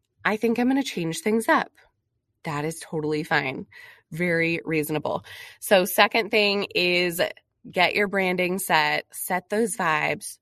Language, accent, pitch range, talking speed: English, American, 165-215 Hz, 145 wpm